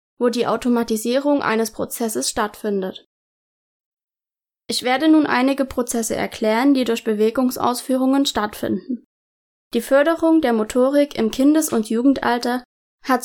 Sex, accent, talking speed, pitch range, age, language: female, German, 115 wpm, 225-270 Hz, 20-39, German